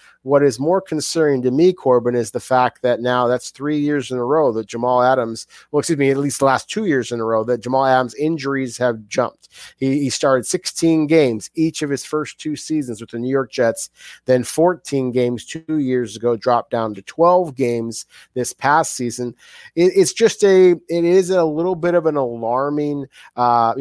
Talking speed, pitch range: 205 wpm, 120-155 Hz